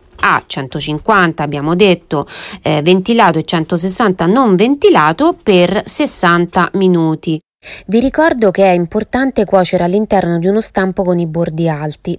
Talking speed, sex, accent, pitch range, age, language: 140 wpm, female, native, 175-250 Hz, 20-39, Italian